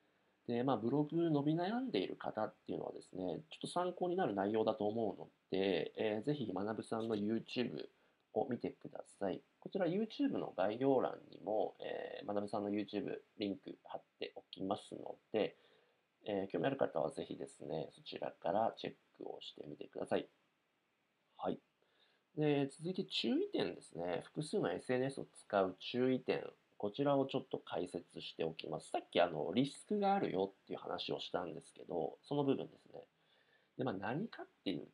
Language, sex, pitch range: Japanese, male, 100-155 Hz